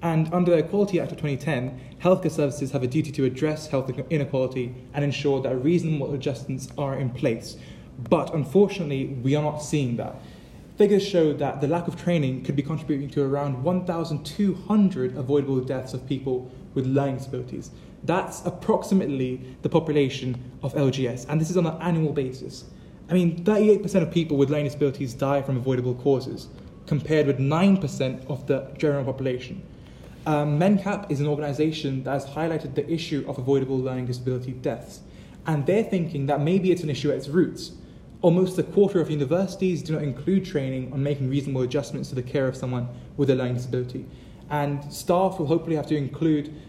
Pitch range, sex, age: 135-160 Hz, male, 20-39